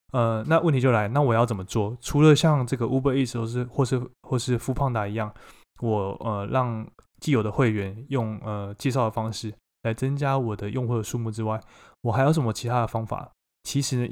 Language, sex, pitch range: Chinese, male, 110-130 Hz